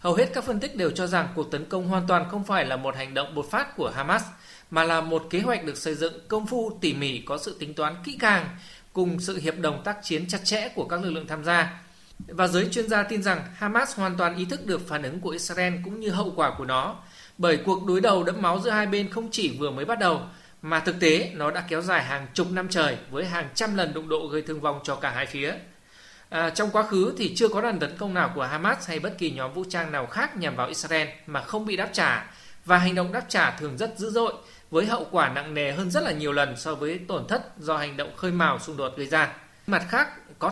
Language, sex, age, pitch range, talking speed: Vietnamese, male, 20-39, 155-200 Hz, 265 wpm